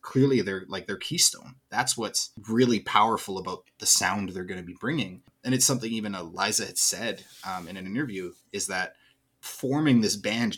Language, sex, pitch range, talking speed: English, male, 100-135 Hz, 185 wpm